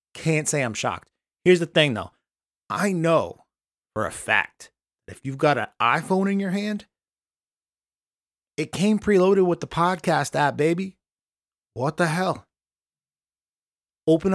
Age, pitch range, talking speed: 30-49, 125-180 Hz, 140 wpm